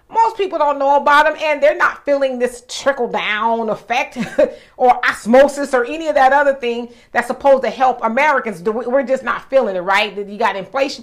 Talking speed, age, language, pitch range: 195 wpm, 40-59, English, 225-280 Hz